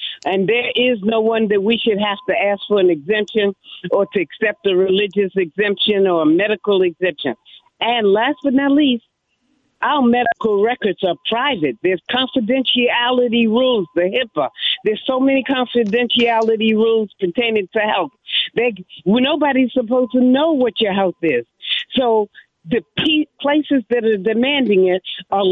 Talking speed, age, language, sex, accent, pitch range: 150 wpm, 50-69, English, female, American, 205-255 Hz